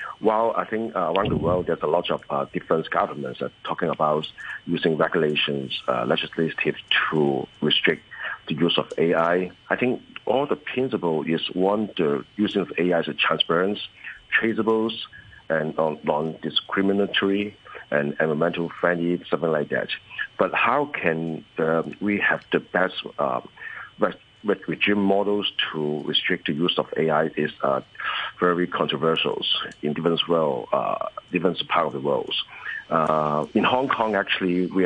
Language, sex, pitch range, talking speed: English, male, 80-100 Hz, 150 wpm